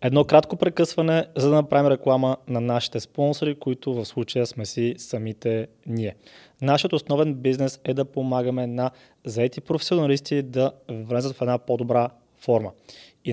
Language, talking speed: Bulgarian, 150 wpm